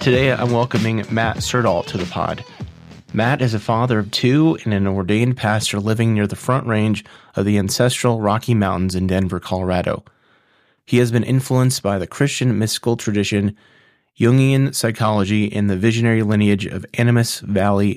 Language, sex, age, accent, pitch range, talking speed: English, male, 20-39, American, 105-125 Hz, 165 wpm